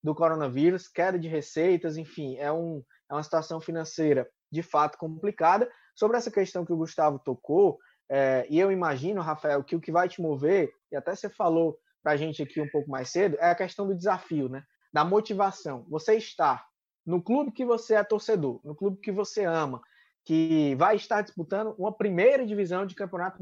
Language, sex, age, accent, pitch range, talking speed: English, male, 20-39, Brazilian, 160-205 Hz, 190 wpm